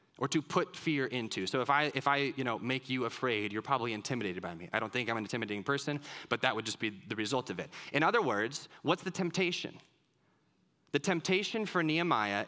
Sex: male